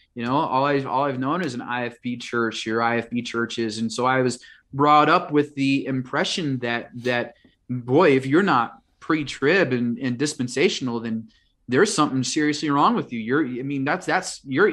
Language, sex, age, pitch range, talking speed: English, male, 30-49, 130-165 Hz, 190 wpm